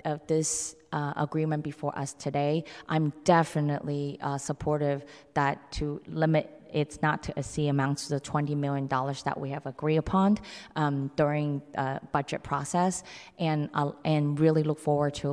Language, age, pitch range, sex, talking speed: English, 20-39, 145-155 Hz, female, 165 wpm